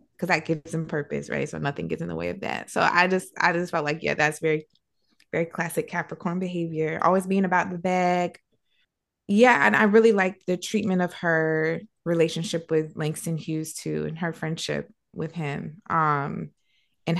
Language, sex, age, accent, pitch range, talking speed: English, female, 20-39, American, 155-185 Hz, 190 wpm